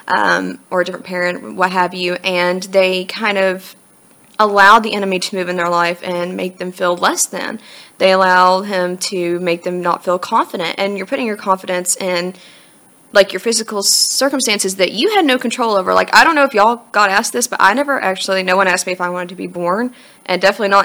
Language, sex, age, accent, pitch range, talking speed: English, female, 20-39, American, 180-245 Hz, 220 wpm